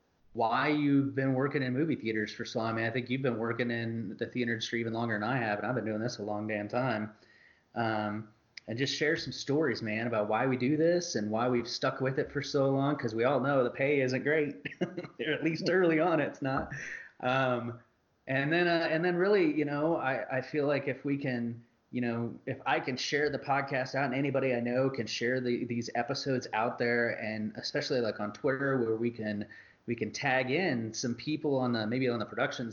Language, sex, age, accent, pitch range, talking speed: English, male, 30-49, American, 115-140 Hz, 230 wpm